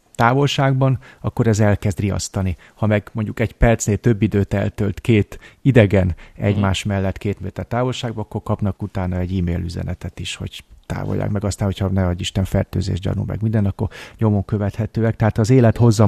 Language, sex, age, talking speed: Hungarian, male, 30-49, 175 wpm